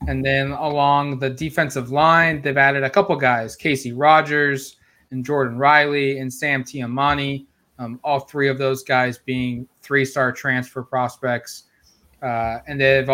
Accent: American